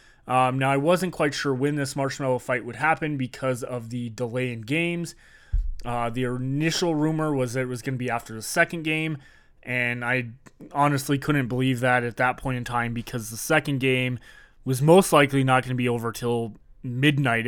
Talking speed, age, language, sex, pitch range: 200 wpm, 20-39, English, male, 125-150 Hz